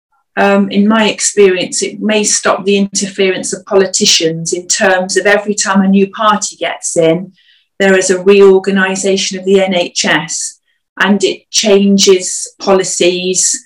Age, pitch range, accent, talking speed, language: 40-59, 185-215 Hz, British, 135 wpm, English